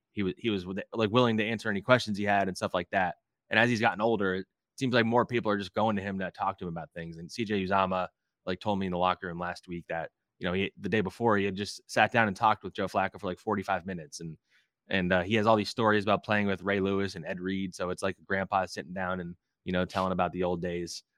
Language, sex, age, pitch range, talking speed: English, male, 20-39, 90-110 Hz, 285 wpm